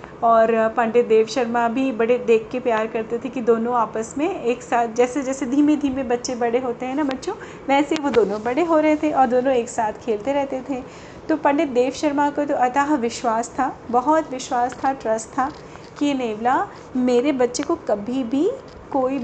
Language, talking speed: Hindi, 195 wpm